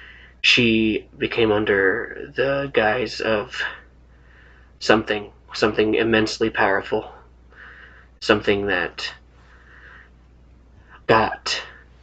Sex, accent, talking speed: male, American, 65 wpm